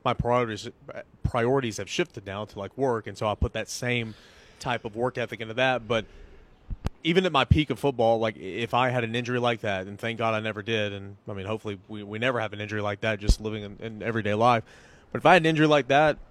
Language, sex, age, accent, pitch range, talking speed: English, male, 30-49, American, 105-130 Hz, 250 wpm